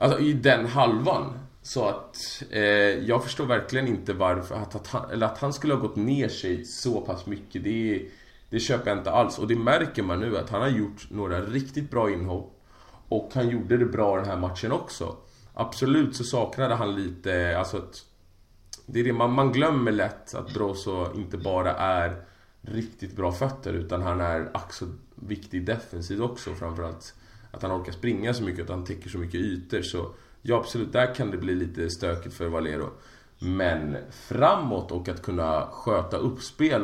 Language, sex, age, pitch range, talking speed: Swedish, male, 30-49, 90-120 Hz, 190 wpm